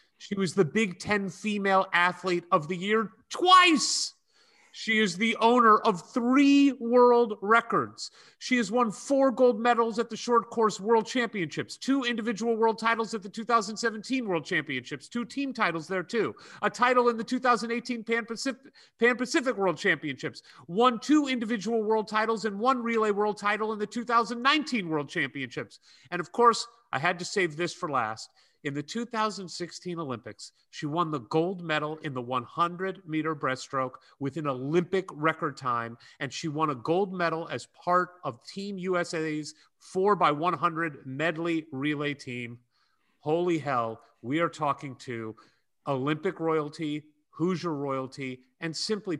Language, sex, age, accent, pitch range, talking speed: English, male, 30-49, American, 150-230 Hz, 155 wpm